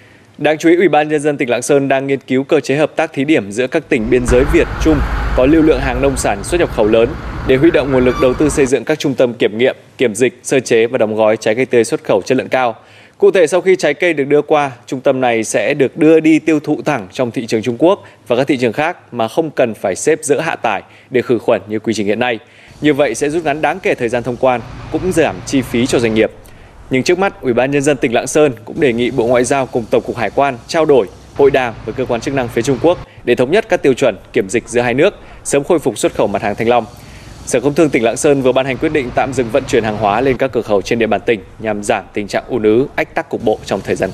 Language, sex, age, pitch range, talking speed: Vietnamese, male, 20-39, 115-150 Hz, 295 wpm